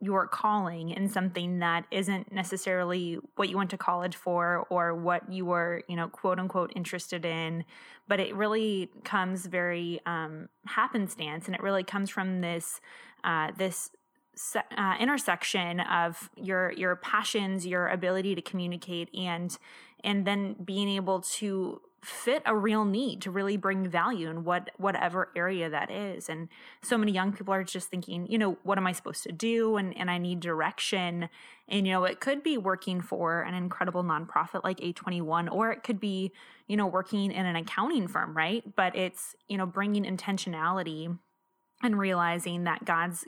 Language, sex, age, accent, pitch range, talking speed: English, female, 20-39, American, 175-200 Hz, 175 wpm